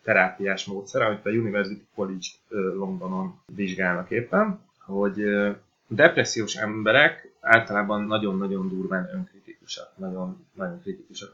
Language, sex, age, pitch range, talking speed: Hungarian, male, 30-49, 95-120 Hz, 95 wpm